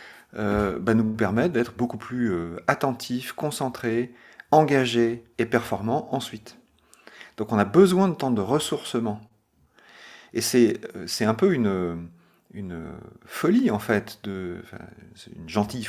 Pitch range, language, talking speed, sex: 105-140 Hz, French, 130 wpm, male